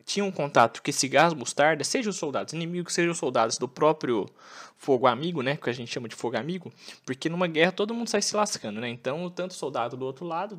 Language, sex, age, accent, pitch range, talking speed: Portuguese, male, 20-39, Brazilian, 145-195 Hz, 235 wpm